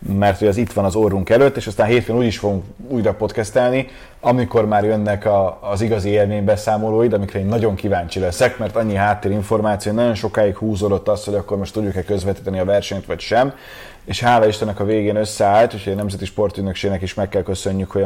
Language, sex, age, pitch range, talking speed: Hungarian, male, 30-49, 100-120 Hz, 200 wpm